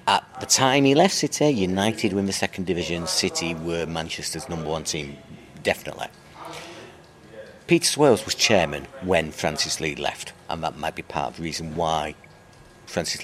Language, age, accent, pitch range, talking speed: English, 40-59, British, 85-115 Hz, 165 wpm